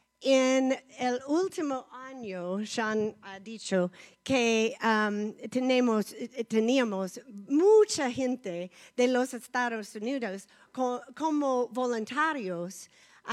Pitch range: 210-280 Hz